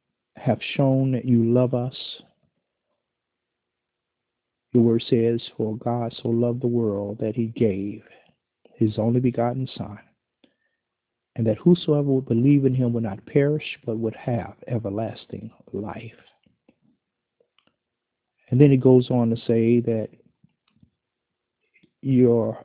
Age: 50-69